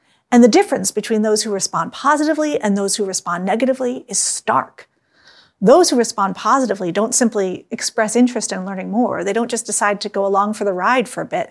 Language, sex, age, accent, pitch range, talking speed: English, female, 40-59, American, 205-260 Hz, 205 wpm